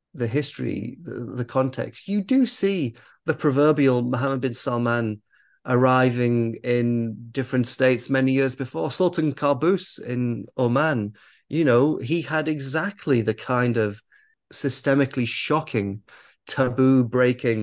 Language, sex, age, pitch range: English, male, 30-49, 115-135 Hz